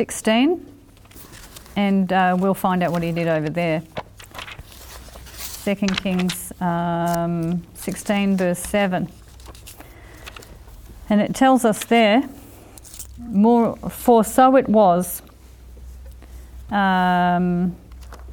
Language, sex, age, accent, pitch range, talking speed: English, female, 40-59, Australian, 180-230 Hz, 90 wpm